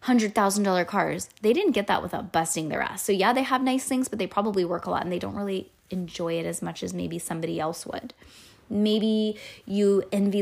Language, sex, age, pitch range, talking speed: English, female, 20-39, 170-210 Hz, 230 wpm